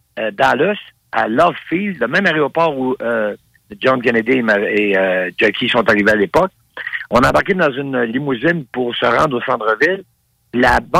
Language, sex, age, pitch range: French, male, 60-79, 115-175 Hz